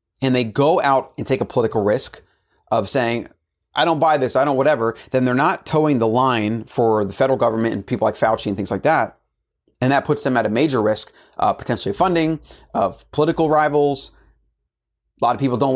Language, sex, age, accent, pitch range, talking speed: English, male, 30-49, American, 115-145 Hz, 210 wpm